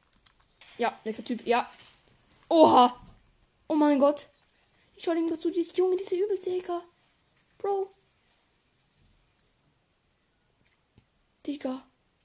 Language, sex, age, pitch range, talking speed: German, female, 10-29, 235-315 Hz, 90 wpm